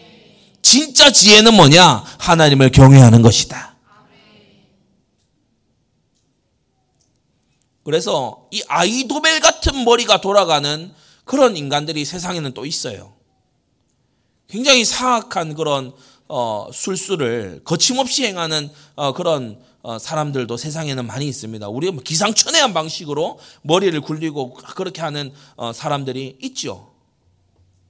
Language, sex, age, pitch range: Korean, male, 30-49, 125-190 Hz